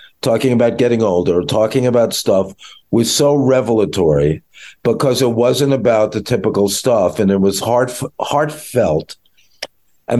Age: 50-69